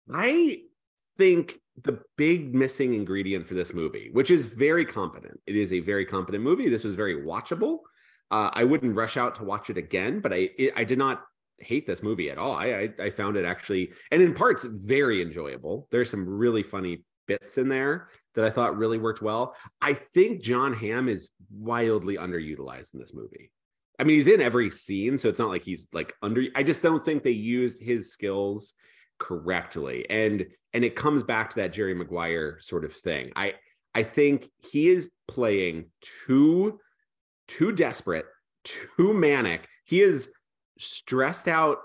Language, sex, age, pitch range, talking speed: English, male, 30-49, 100-150 Hz, 180 wpm